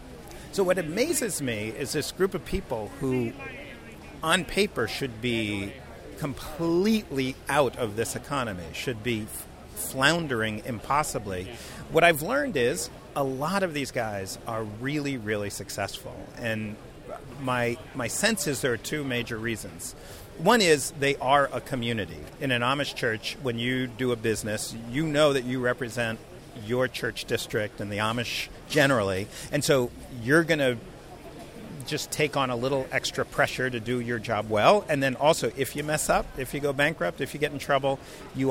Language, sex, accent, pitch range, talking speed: English, male, American, 115-145 Hz, 165 wpm